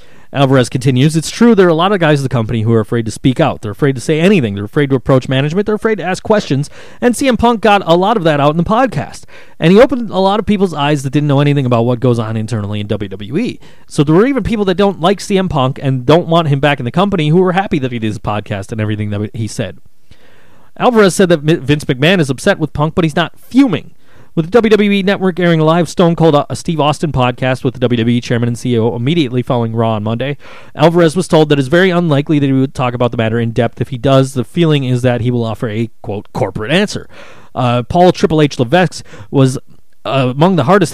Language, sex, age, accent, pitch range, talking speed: English, male, 30-49, American, 120-170 Hz, 250 wpm